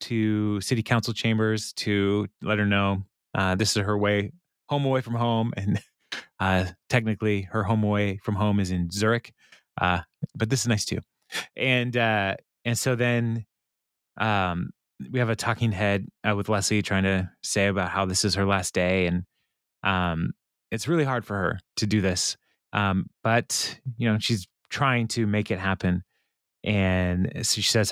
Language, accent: English, American